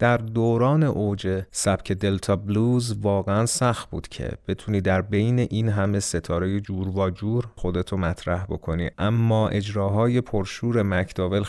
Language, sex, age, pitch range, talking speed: Persian, male, 30-49, 90-105 Hz, 135 wpm